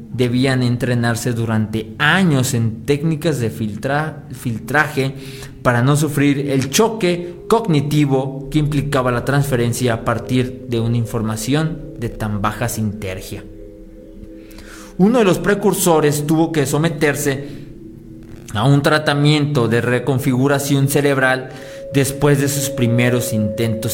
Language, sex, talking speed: Spanish, male, 115 wpm